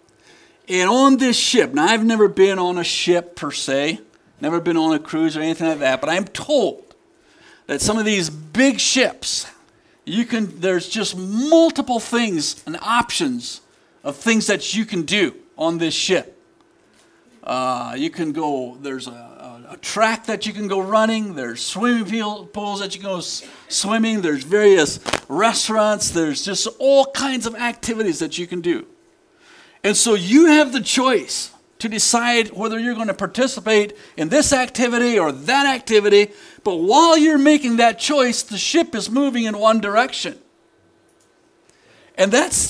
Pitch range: 185-255 Hz